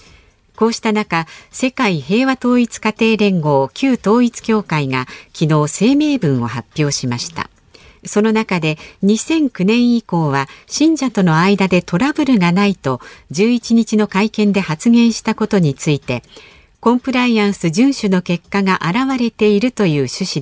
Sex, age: female, 50-69